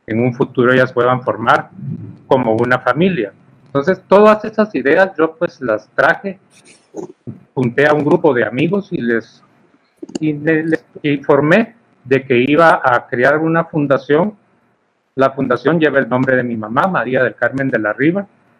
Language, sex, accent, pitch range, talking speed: Spanish, male, Mexican, 120-165 Hz, 160 wpm